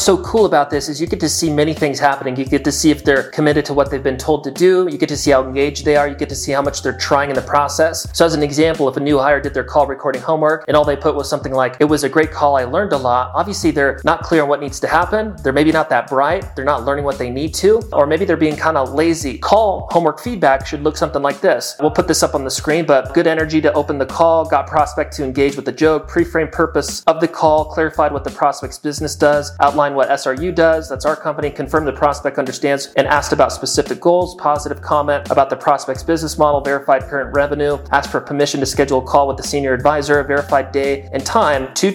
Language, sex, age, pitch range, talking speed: English, male, 30-49, 140-155 Hz, 265 wpm